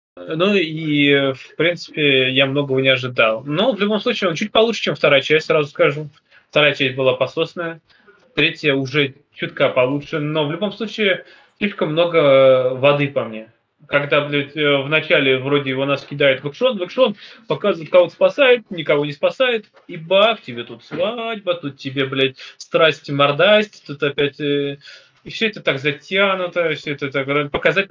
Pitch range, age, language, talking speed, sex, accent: 140-185 Hz, 20-39, Russian, 160 wpm, male, native